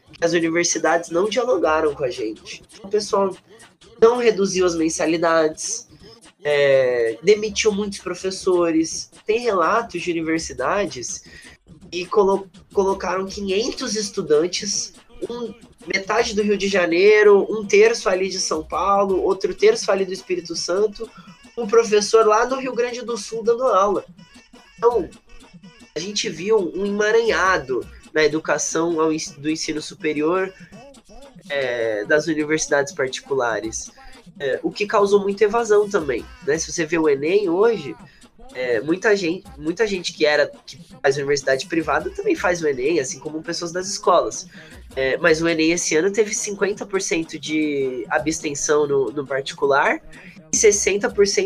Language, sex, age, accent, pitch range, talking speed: Portuguese, male, 20-39, Brazilian, 170-240 Hz, 130 wpm